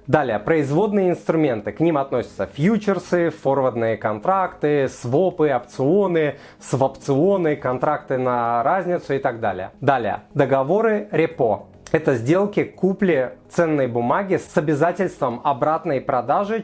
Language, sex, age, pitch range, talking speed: Russian, male, 30-49, 130-175 Hz, 110 wpm